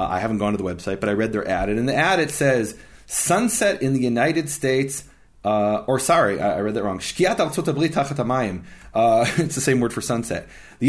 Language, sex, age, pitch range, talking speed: English, male, 30-49, 115-160 Hz, 210 wpm